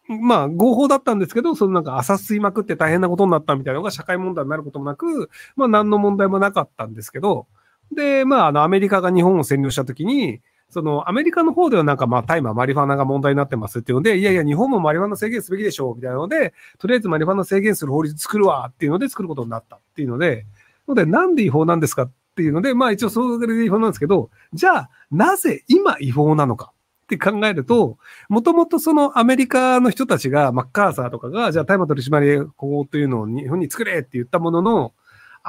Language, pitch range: Japanese, 135-225 Hz